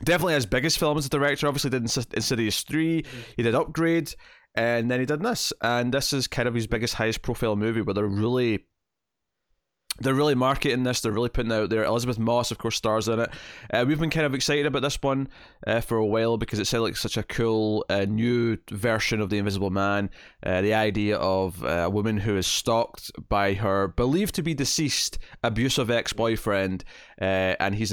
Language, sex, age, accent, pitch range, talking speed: English, male, 20-39, British, 100-130 Hz, 205 wpm